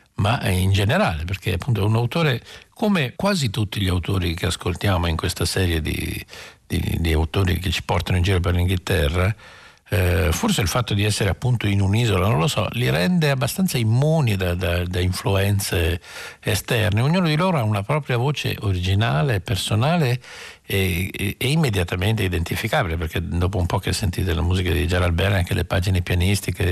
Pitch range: 90-120 Hz